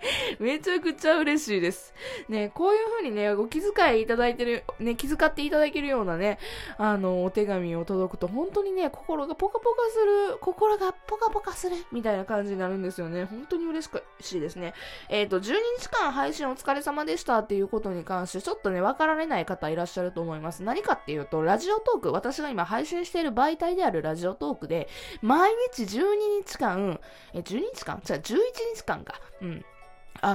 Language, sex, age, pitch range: Japanese, female, 20-39, 190-310 Hz